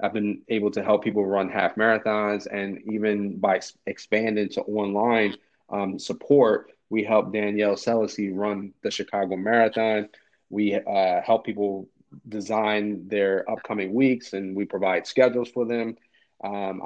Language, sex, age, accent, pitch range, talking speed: English, male, 30-49, American, 105-115 Hz, 140 wpm